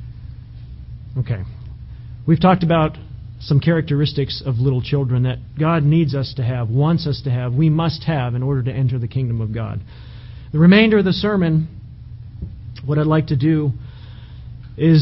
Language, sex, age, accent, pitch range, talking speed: English, male, 40-59, American, 120-170 Hz, 165 wpm